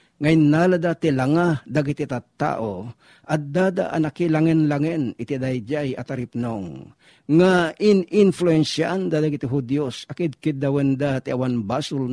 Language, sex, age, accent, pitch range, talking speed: Filipino, male, 50-69, native, 130-165 Hz, 115 wpm